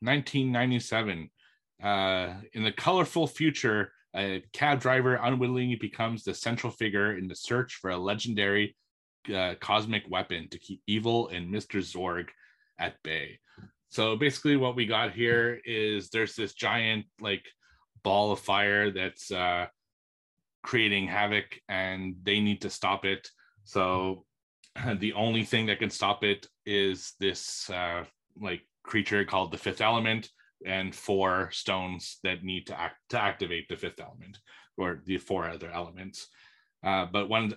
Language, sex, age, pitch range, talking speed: English, male, 30-49, 95-110 Hz, 145 wpm